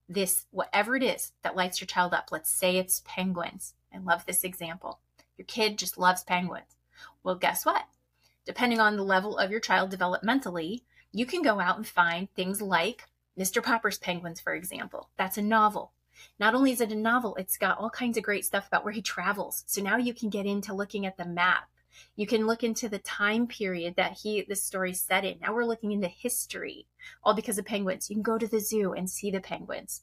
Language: English